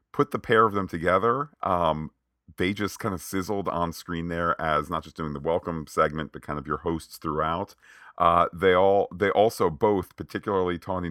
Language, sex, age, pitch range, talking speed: English, male, 40-59, 75-95 Hz, 195 wpm